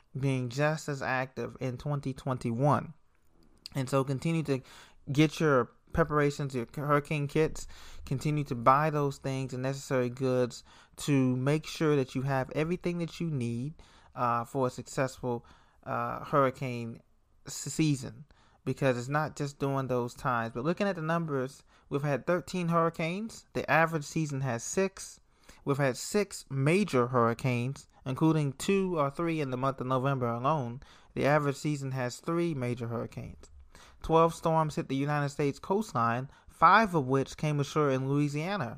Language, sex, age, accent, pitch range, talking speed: English, male, 30-49, American, 125-155 Hz, 150 wpm